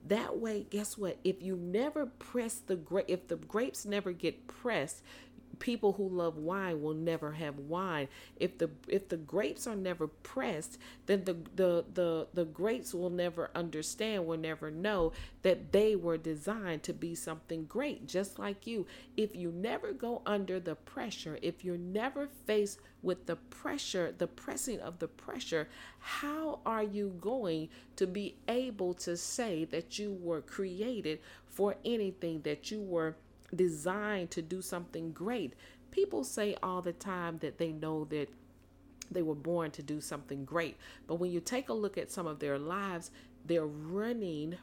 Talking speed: 170 wpm